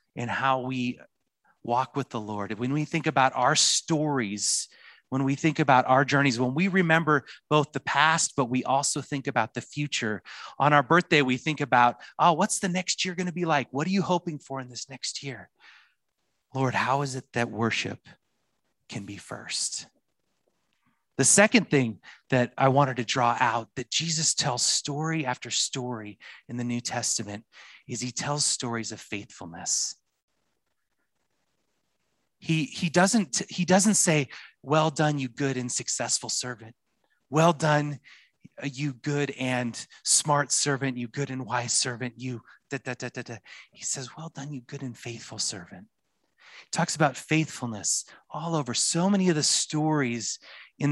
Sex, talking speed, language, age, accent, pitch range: male, 165 wpm, English, 30-49, American, 120-150 Hz